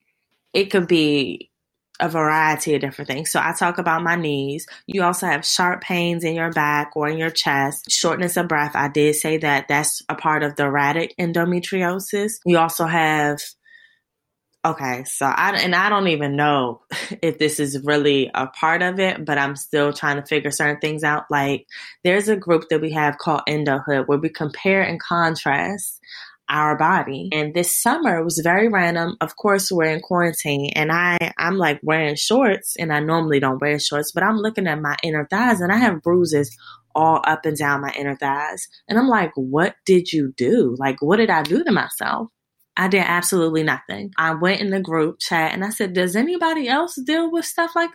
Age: 20-39